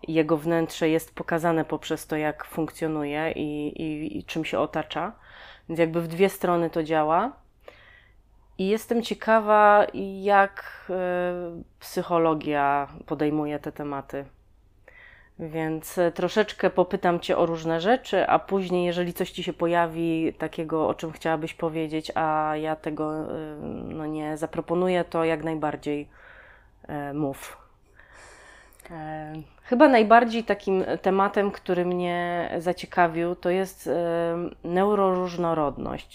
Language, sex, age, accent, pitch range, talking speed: Polish, female, 30-49, native, 155-180 Hz, 110 wpm